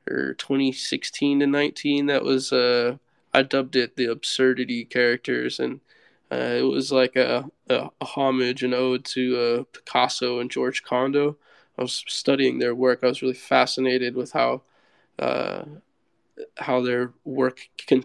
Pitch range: 120-135 Hz